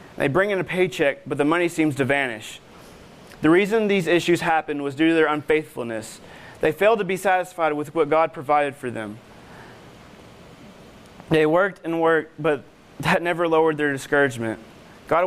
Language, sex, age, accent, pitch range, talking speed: English, male, 20-39, American, 135-170 Hz, 170 wpm